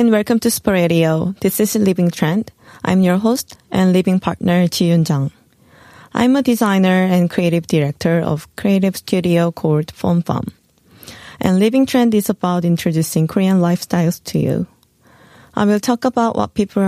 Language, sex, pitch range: Korean, female, 170-215 Hz